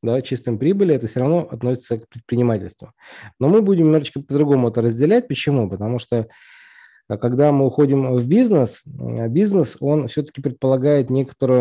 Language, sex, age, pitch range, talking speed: Russian, male, 20-39, 105-135 Hz, 150 wpm